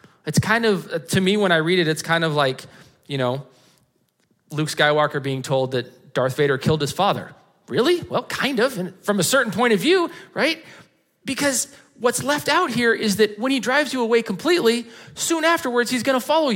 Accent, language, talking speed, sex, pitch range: American, English, 200 wpm, male, 130-215 Hz